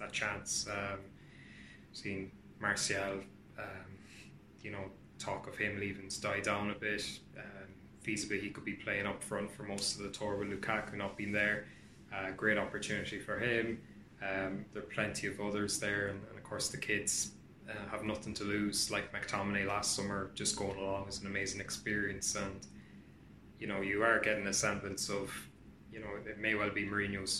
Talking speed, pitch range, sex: 185 wpm, 100-105 Hz, male